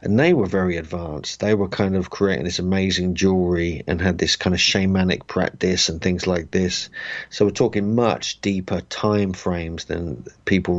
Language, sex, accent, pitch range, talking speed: English, male, British, 90-100 Hz, 185 wpm